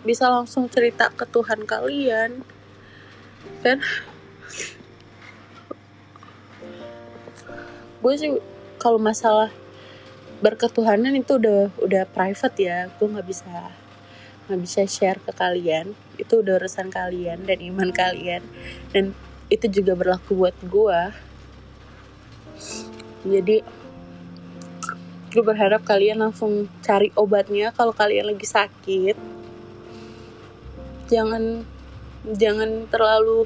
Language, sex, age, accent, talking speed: Indonesian, female, 20-39, native, 95 wpm